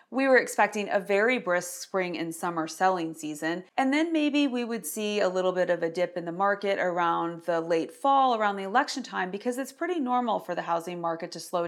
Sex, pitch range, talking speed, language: female, 175-255 Hz, 225 wpm, English